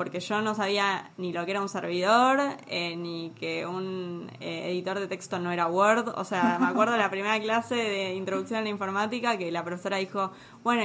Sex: female